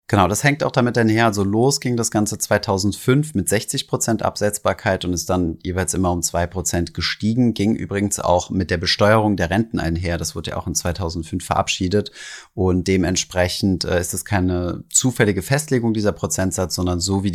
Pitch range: 90-105 Hz